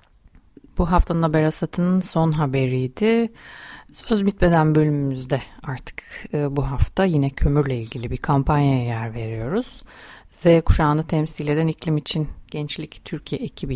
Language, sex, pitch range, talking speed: Turkish, female, 135-165 Hz, 120 wpm